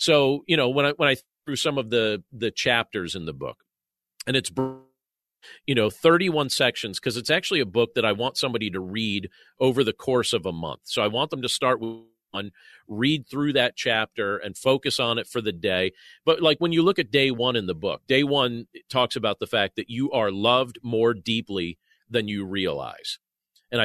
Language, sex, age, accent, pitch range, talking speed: English, male, 40-59, American, 110-145 Hz, 215 wpm